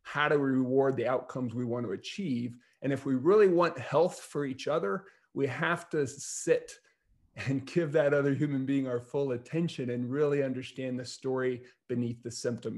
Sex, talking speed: male, 190 wpm